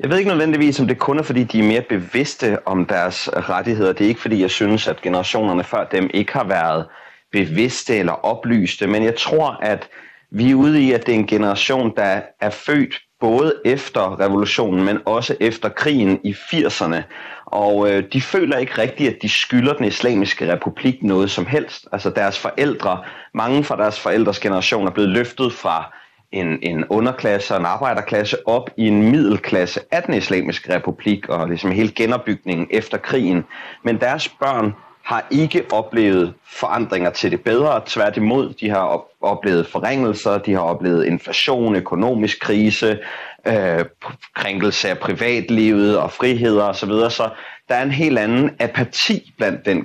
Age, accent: 30-49, native